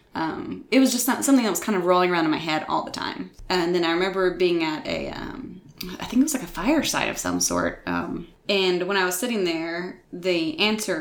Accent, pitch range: American, 170-245 Hz